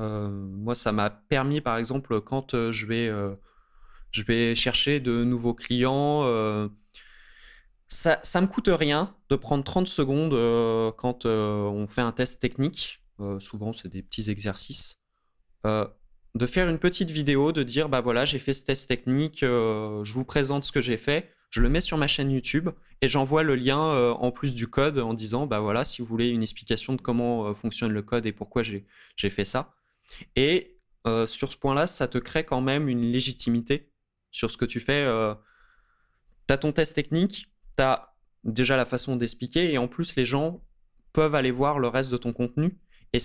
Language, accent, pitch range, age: French, French, 115-140 Hz, 20-39